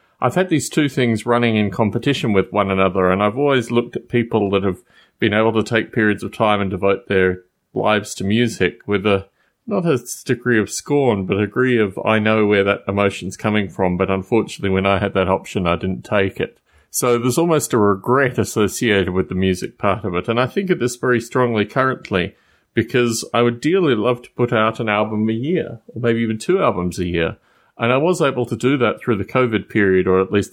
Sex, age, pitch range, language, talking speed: male, 30-49, 100-125 Hz, English, 225 wpm